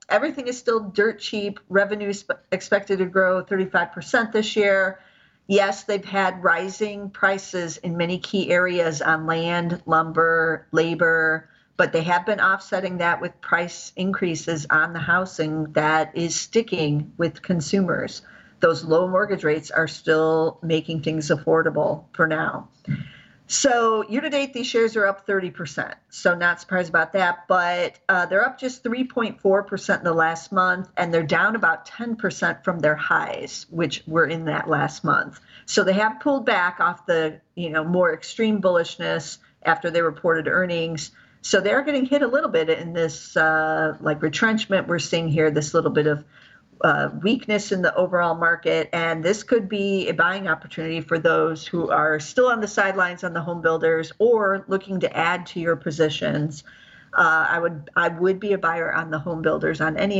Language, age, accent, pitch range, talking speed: English, 50-69, American, 160-200 Hz, 170 wpm